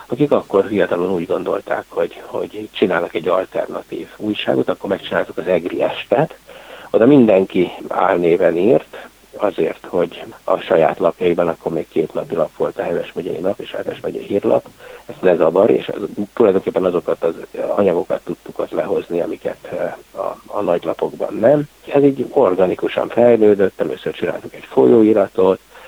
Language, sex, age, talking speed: Hungarian, male, 60-79, 150 wpm